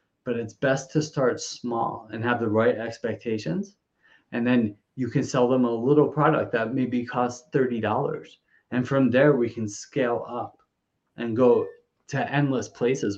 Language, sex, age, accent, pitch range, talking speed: English, male, 30-49, American, 120-145 Hz, 165 wpm